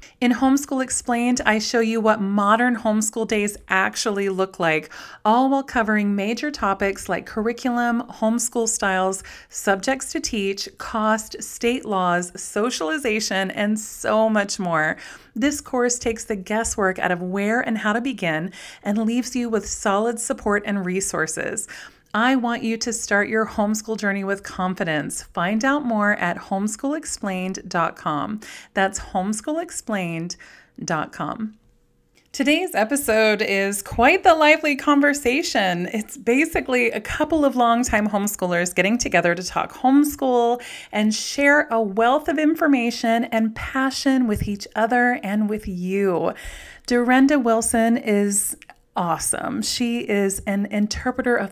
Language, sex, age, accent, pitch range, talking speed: English, female, 30-49, American, 200-250 Hz, 130 wpm